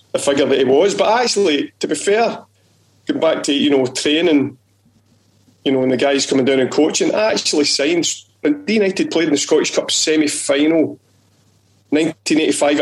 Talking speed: 165 wpm